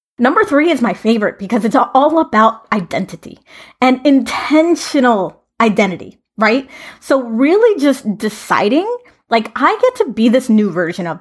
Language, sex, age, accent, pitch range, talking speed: English, female, 30-49, American, 210-270 Hz, 145 wpm